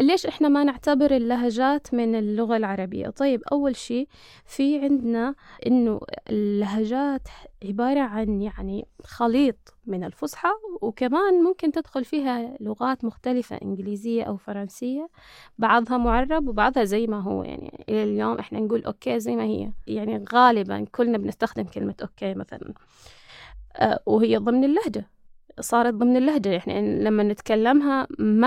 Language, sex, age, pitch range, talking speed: Arabic, female, 20-39, 205-265 Hz, 130 wpm